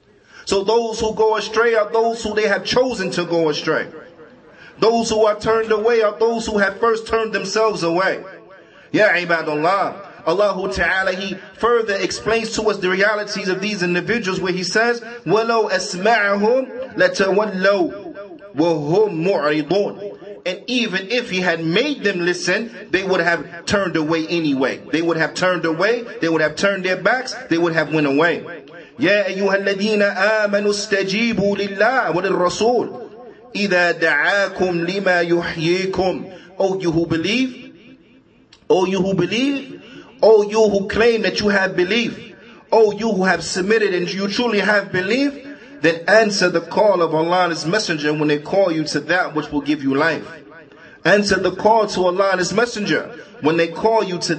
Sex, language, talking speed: male, English, 165 wpm